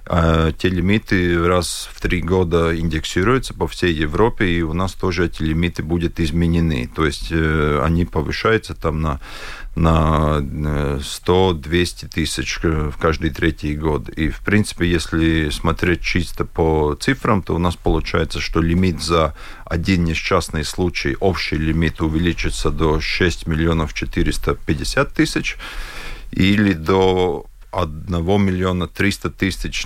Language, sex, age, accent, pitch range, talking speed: Russian, male, 40-59, native, 80-90 Hz, 130 wpm